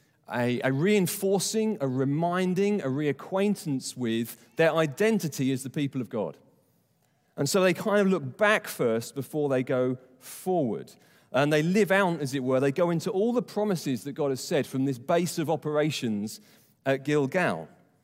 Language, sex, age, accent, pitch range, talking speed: English, male, 40-59, British, 140-205 Hz, 170 wpm